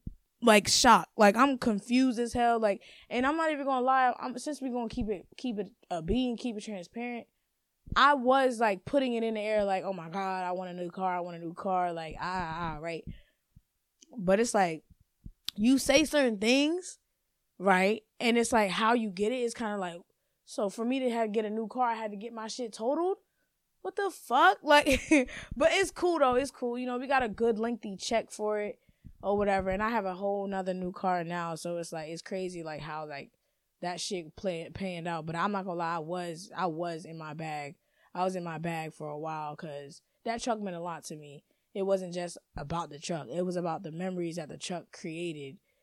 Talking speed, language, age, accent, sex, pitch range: 230 wpm, English, 20-39, American, female, 170-235 Hz